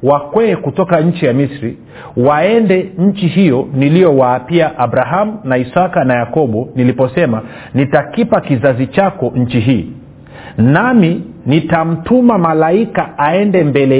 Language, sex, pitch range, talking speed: Swahili, male, 135-190 Hz, 110 wpm